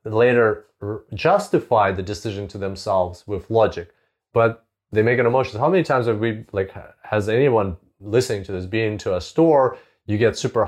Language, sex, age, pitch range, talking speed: English, male, 30-49, 100-135 Hz, 175 wpm